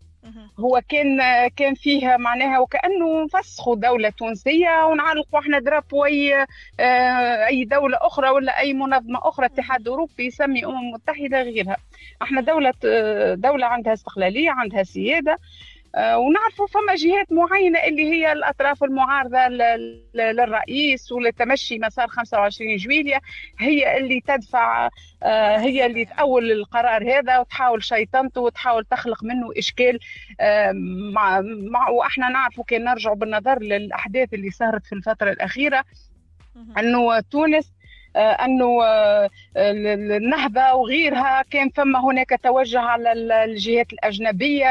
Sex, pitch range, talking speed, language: female, 225-285 Hz, 115 wpm, Arabic